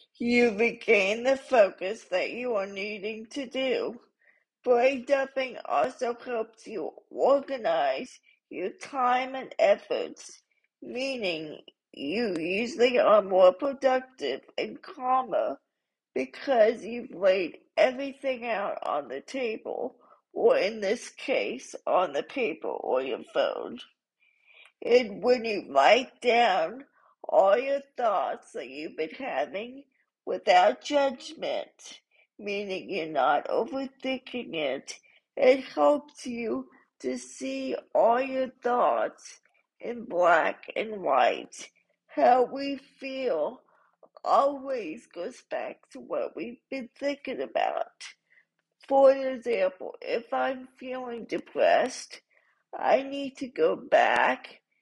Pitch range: 240-300 Hz